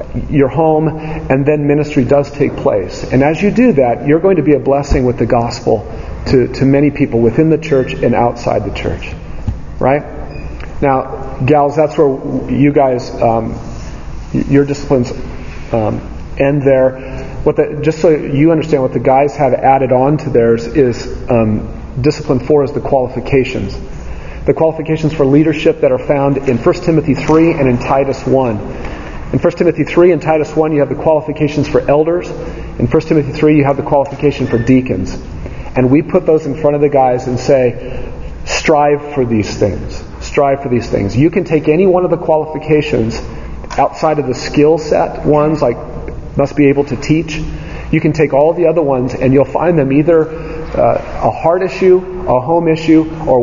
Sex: male